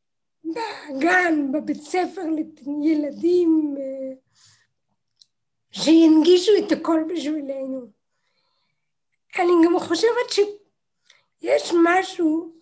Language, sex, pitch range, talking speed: Hebrew, female, 300-350 Hz, 60 wpm